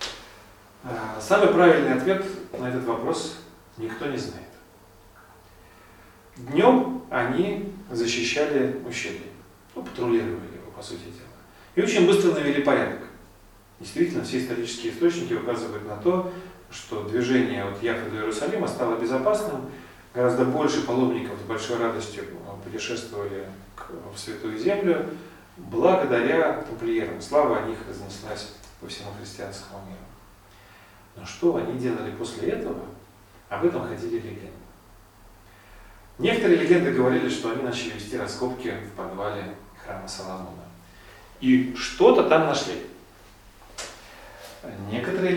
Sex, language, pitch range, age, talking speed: male, Russian, 100-130 Hz, 40-59, 115 wpm